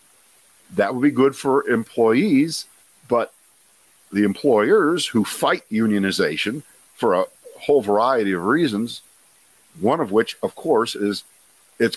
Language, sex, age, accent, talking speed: English, male, 50-69, American, 125 wpm